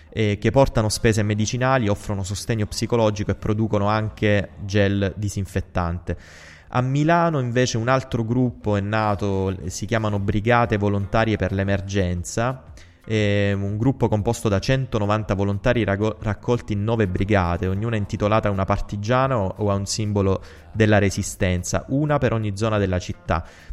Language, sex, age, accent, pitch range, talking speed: Italian, male, 20-39, native, 95-115 Hz, 135 wpm